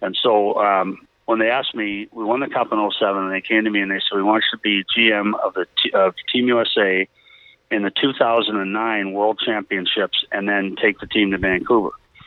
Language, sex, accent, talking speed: English, male, American, 215 wpm